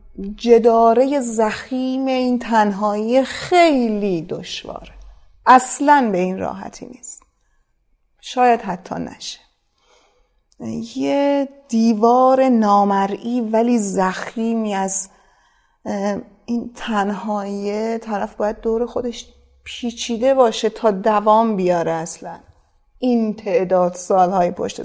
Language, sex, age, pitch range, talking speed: Persian, female, 30-49, 195-250 Hz, 85 wpm